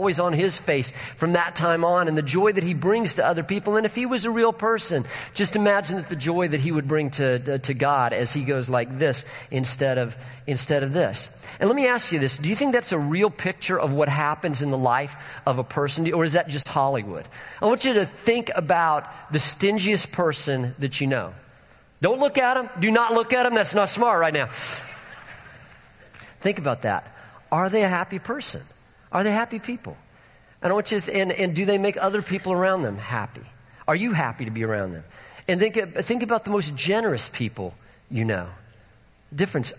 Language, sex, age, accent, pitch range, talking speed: English, male, 50-69, American, 140-205 Hz, 220 wpm